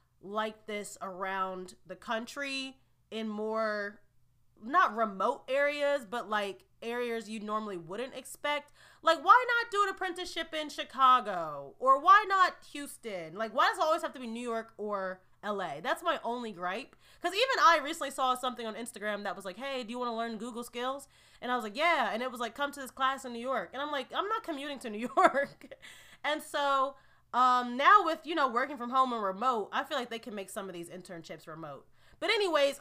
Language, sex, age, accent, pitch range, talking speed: English, female, 20-39, American, 205-285 Hz, 210 wpm